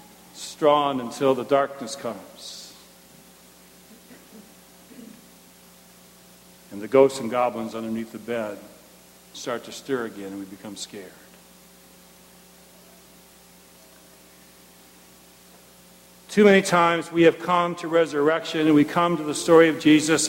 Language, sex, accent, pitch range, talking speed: English, male, American, 145-225 Hz, 110 wpm